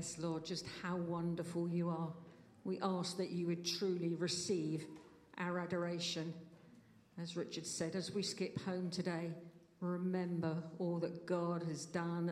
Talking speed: 140 wpm